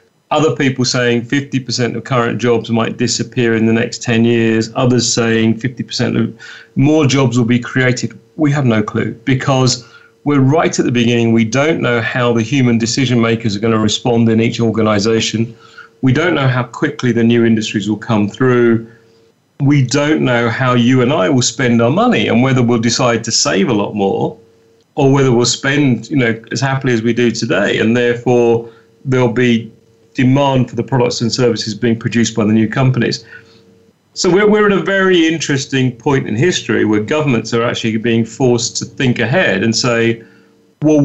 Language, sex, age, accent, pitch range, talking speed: English, male, 40-59, British, 115-130 Hz, 190 wpm